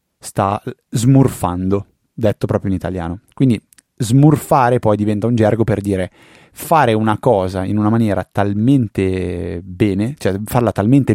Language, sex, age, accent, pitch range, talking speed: Italian, male, 30-49, native, 95-115 Hz, 135 wpm